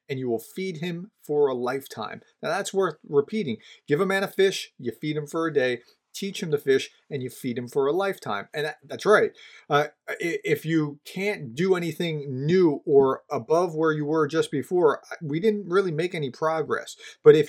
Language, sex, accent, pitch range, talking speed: English, male, American, 145-190 Hz, 200 wpm